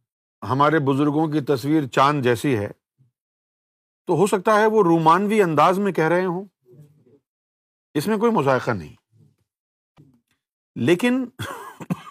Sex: male